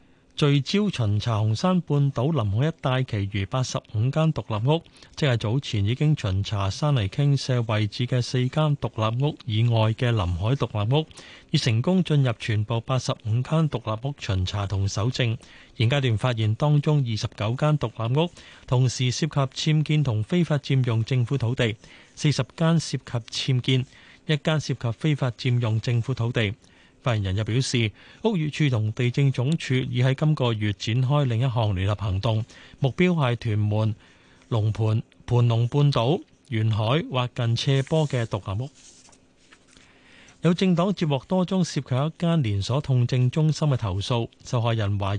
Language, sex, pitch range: Chinese, male, 110-145 Hz